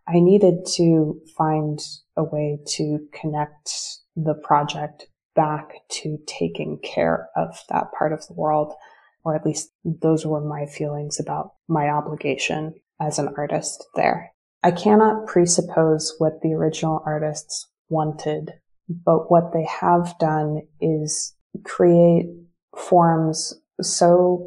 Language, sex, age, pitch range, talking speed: English, female, 20-39, 150-170 Hz, 125 wpm